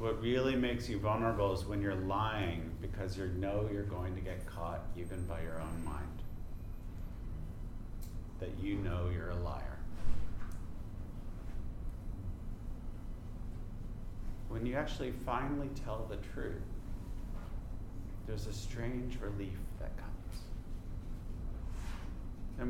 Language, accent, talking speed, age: English, American, 110 wpm, 40-59